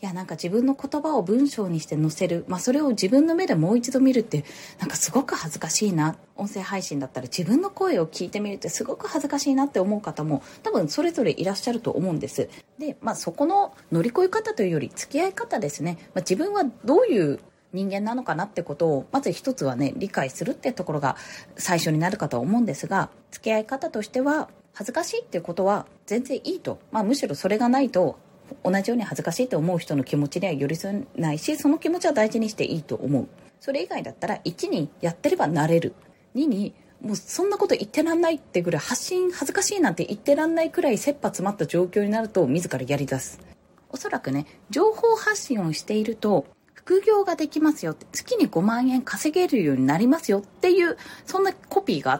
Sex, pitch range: female, 175-295 Hz